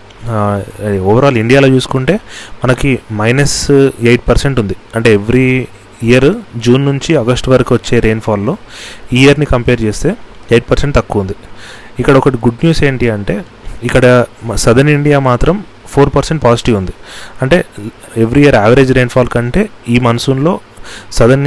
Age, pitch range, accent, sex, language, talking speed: 30-49, 115-140 Hz, native, male, Telugu, 135 wpm